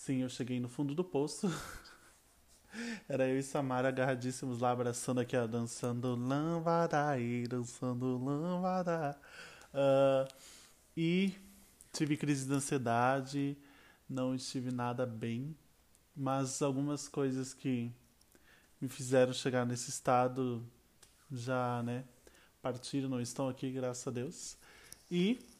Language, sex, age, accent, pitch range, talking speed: Portuguese, male, 20-39, Brazilian, 125-145 Hz, 115 wpm